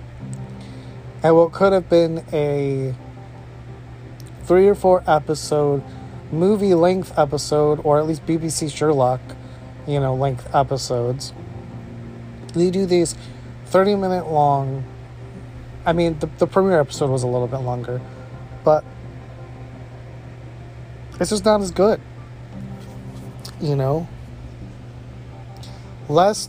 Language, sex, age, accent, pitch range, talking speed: English, male, 30-49, American, 120-160 Hz, 110 wpm